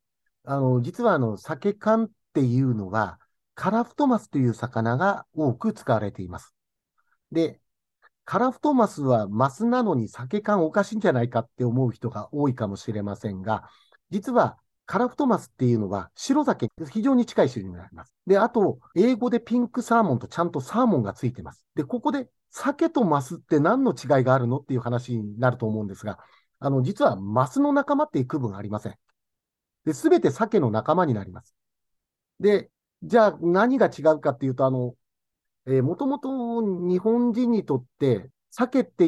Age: 50-69